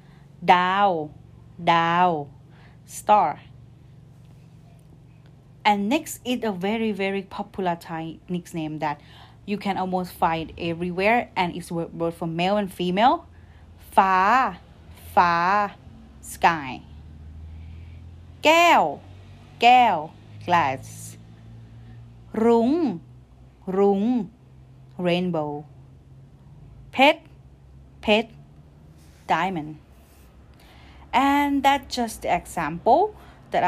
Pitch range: 140-200 Hz